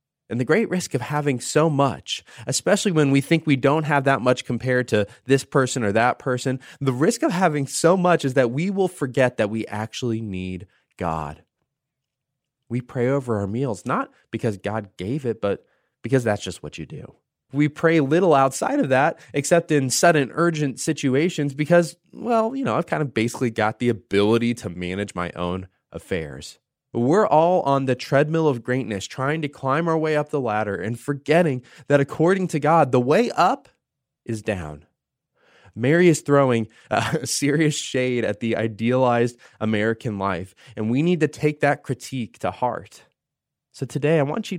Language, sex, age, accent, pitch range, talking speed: English, male, 20-39, American, 115-150 Hz, 180 wpm